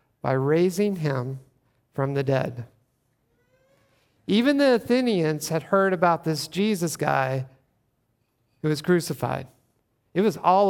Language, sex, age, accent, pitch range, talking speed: English, male, 50-69, American, 120-170 Hz, 120 wpm